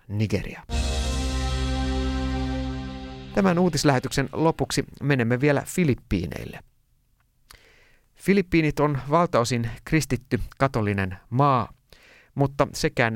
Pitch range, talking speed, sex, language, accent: 105-135 Hz, 65 wpm, male, Finnish, native